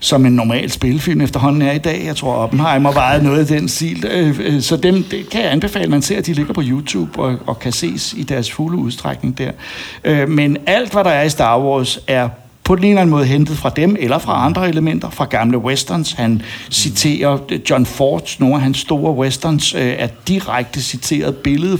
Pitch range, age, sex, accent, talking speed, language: 130-165 Hz, 60-79, male, native, 210 wpm, Danish